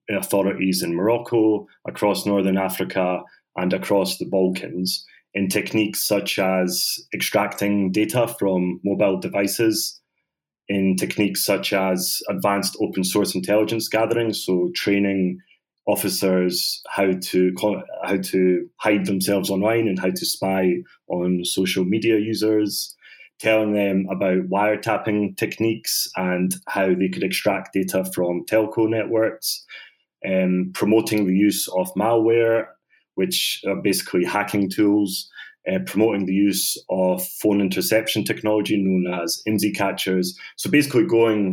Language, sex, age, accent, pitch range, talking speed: English, male, 30-49, British, 95-110 Hz, 125 wpm